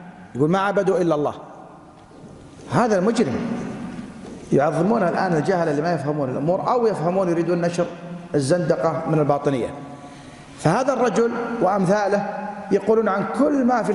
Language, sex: Arabic, male